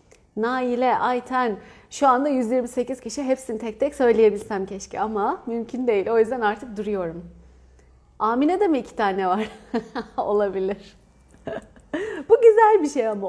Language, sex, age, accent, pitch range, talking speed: Turkish, female, 30-49, native, 205-280 Hz, 135 wpm